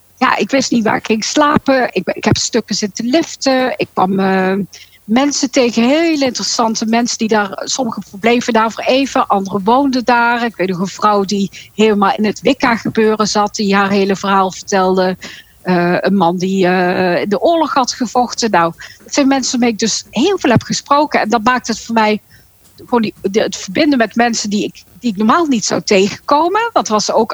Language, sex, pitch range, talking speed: Dutch, female, 195-260 Hz, 205 wpm